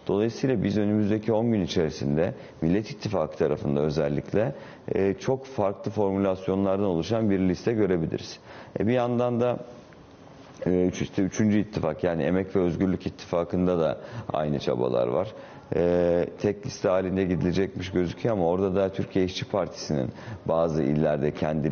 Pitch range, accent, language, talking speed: 80-105 Hz, native, Turkish, 125 wpm